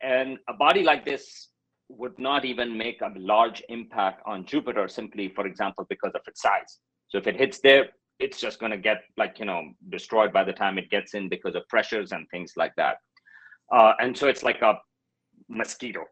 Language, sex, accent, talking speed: English, male, Indian, 205 wpm